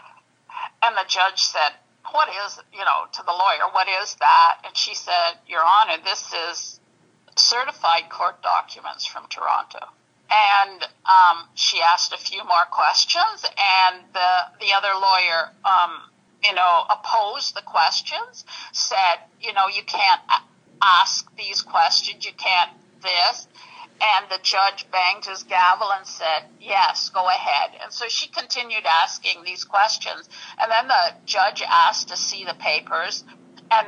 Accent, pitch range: American, 190-280 Hz